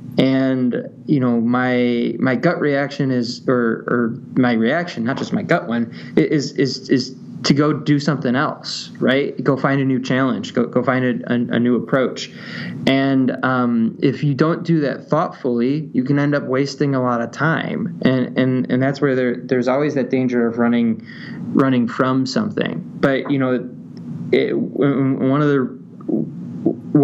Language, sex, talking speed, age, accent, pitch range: English, male, 170 wpm, 20-39, American, 120-145 Hz